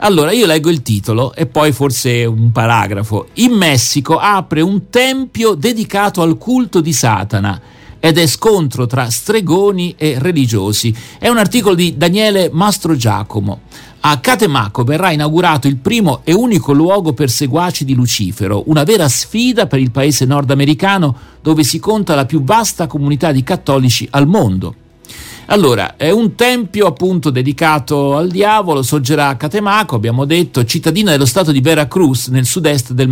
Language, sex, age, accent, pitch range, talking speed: Italian, male, 50-69, native, 130-185 Hz, 155 wpm